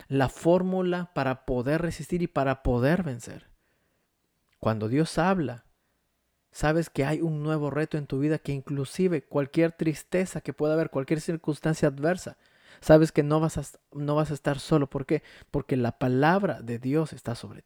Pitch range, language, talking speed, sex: 135-165 Hz, Spanish, 170 wpm, male